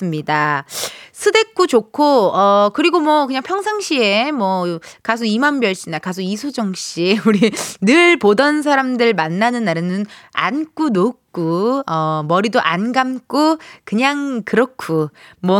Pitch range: 195-295 Hz